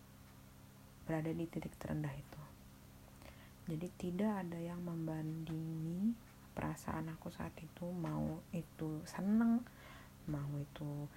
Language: Indonesian